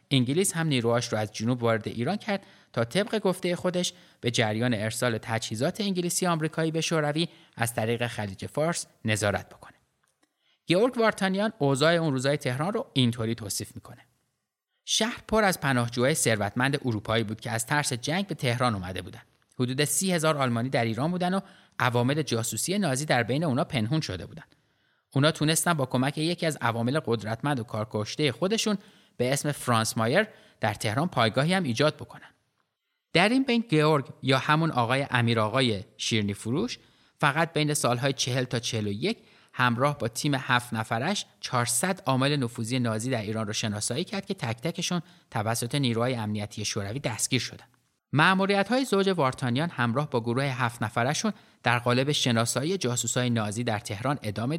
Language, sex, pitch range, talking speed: Persian, male, 115-165 Hz, 160 wpm